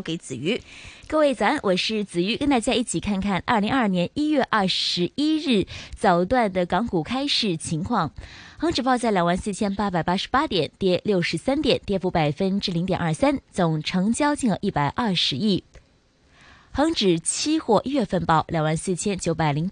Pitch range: 170-250 Hz